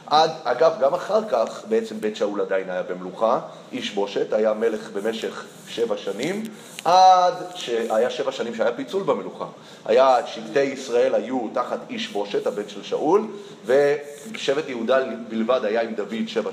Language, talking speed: Hebrew, 150 wpm